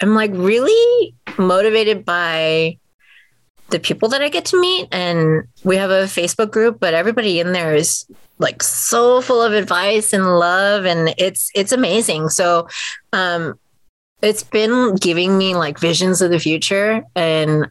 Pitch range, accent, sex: 170-205 Hz, American, female